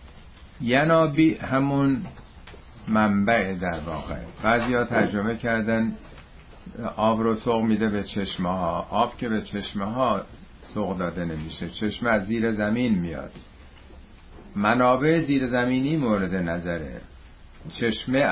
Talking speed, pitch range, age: 115 wpm, 90-120 Hz, 50-69